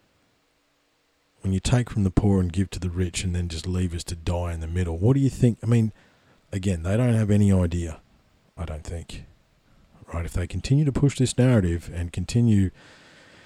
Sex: male